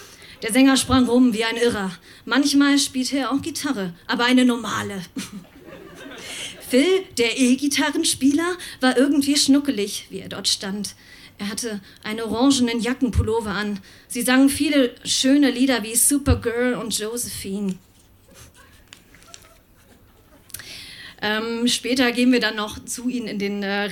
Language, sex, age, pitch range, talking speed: German, female, 30-49, 210-265 Hz, 130 wpm